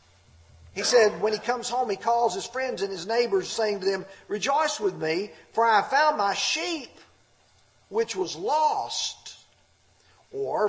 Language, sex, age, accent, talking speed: English, male, 40-59, American, 165 wpm